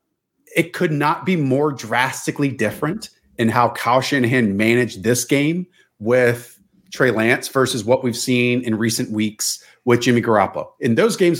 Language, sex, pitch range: English, male, 115-140 Hz